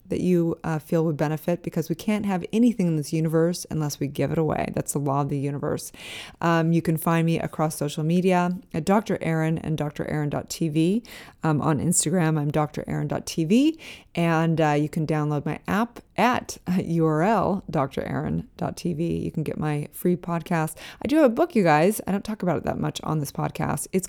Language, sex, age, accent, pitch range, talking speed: English, female, 20-39, American, 155-180 Hz, 205 wpm